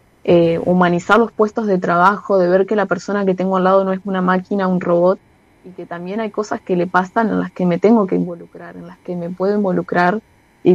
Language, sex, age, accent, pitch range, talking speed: Spanish, female, 20-39, Argentinian, 170-200 Hz, 240 wpm